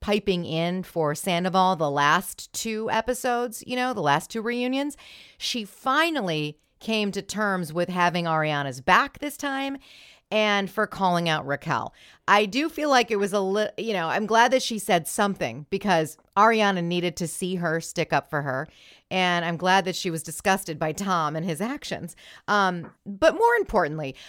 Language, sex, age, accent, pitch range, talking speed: English, female, 40-59, American, 165-245 Hz, 180 wpm